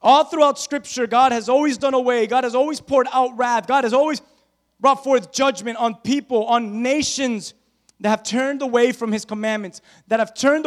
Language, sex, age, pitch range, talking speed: English, male, 20-39, 200-265 Hz, 190 wpm